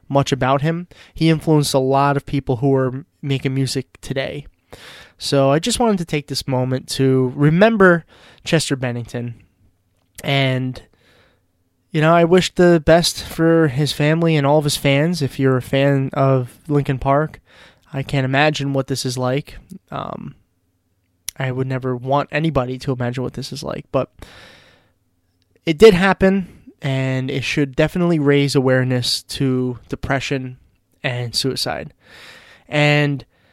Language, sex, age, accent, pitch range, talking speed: English, male, 20-39, American, 125-155 Hz, 145 wpm